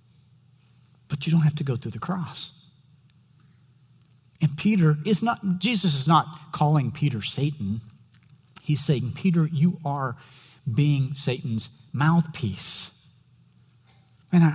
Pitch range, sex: 130-165 Hz, male